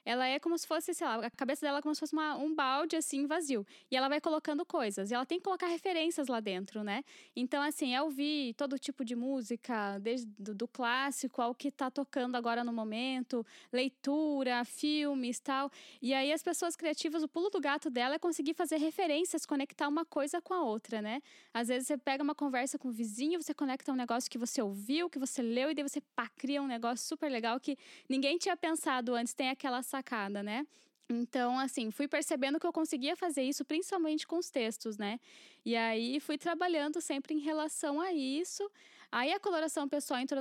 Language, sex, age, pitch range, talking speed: Portuguese, female, 10-29, 255-315 Hz, 210 wpm